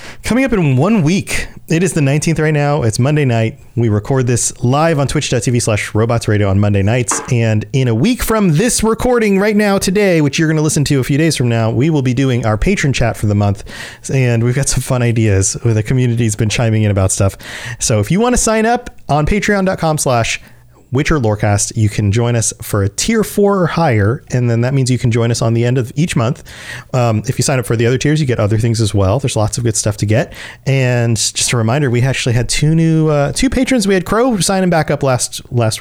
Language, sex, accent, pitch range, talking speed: English, male, American, 115-165 Hz, 250 wpm